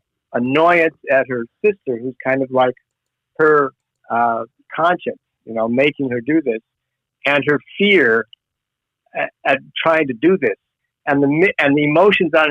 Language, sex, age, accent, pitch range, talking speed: English, male, 50-69, American, 125-160 Hz, 155 wpm